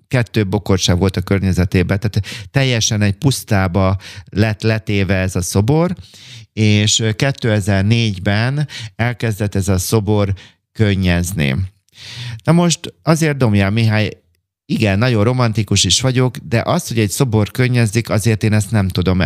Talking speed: 130 wpm